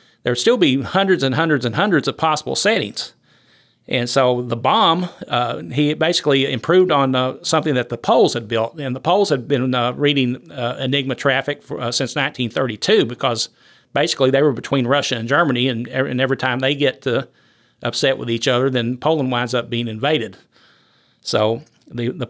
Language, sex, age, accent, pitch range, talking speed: English, male, 40-59, American, 120-150 Hz, 190 wpm